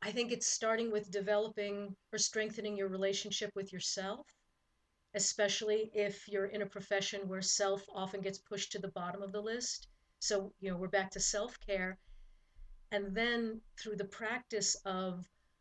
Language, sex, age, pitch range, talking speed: English, female, 40-59, 190-210 Hz, 165 wpm